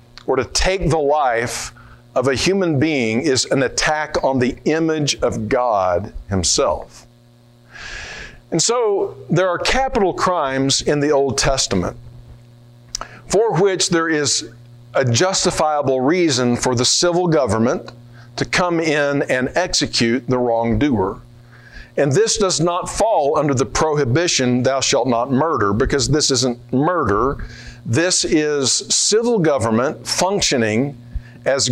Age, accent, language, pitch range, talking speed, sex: 50-69, American, English, 120-165 Hz, 125 wpm, male